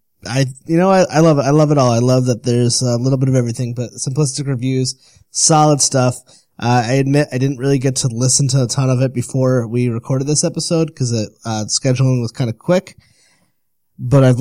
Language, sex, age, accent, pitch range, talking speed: English, male, 20-39, American, 120-145 Hz, 225 wpm